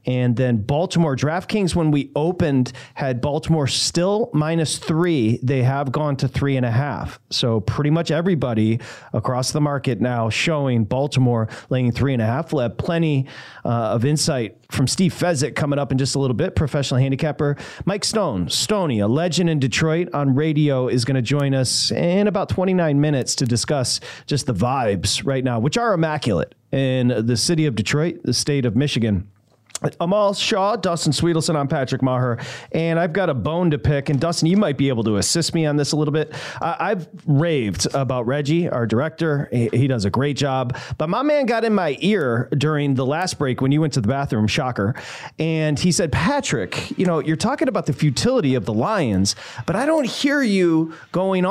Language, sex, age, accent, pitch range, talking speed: English, male, 40-59, American, 125-165 Hz, 195 wpm